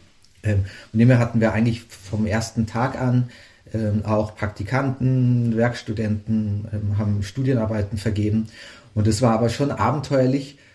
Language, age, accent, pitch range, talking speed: German, 30-49, German, 110-130 Hz, 125 wpm